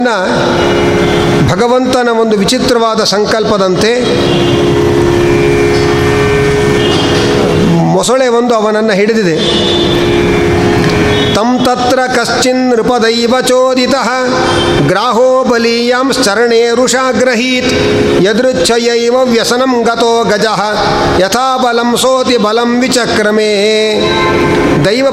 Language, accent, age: Kannada, native, 50-69